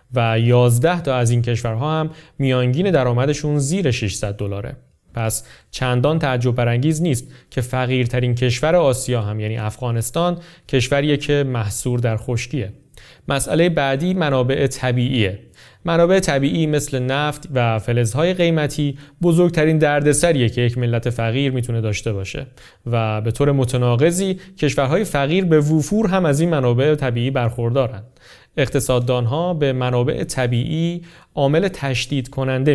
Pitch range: 120-150 Hz